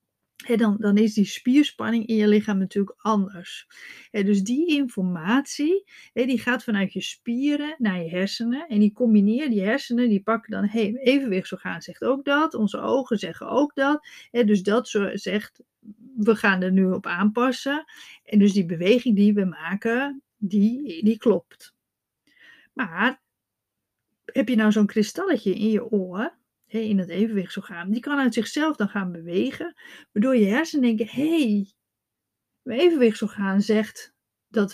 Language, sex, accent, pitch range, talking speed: Dutch, female, Dutch, 200-255 Hz, 155 wpm